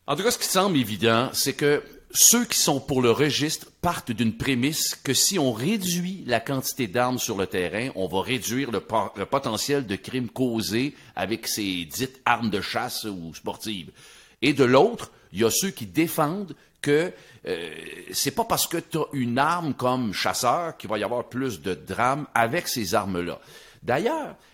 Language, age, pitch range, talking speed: French, 50-69, 120-170 Hz, 190 wpm